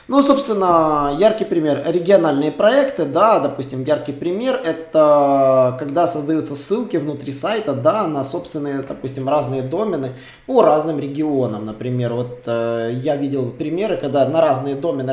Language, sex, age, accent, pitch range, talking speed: Russian, male, 20-39, native, 135-185 Hz, 140 wpm